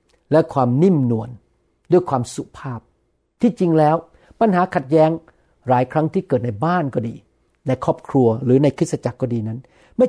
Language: Thai